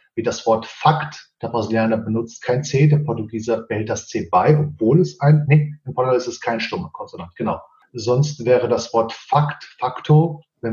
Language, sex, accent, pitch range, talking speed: German, male, German, 115-150 Hz, 190 wpm